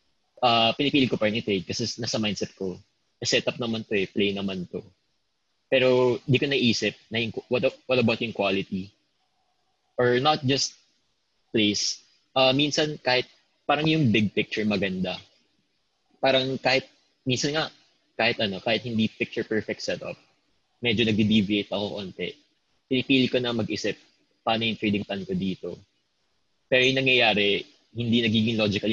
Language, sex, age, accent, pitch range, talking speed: English, male, 20-39, Filipino, 100-125 Hz, 145 wpm